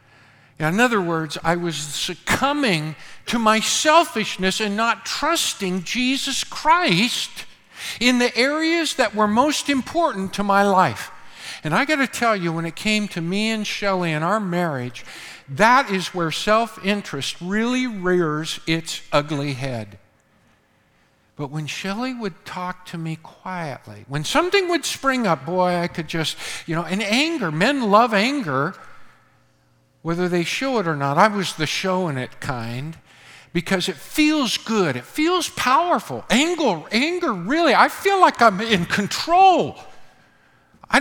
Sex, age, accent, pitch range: male, 50-69, American, 150-250 Hz